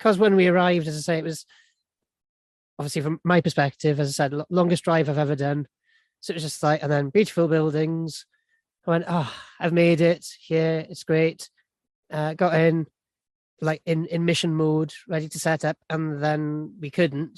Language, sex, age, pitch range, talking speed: English, male, 20-39, 155-185 Hz, 195 wpm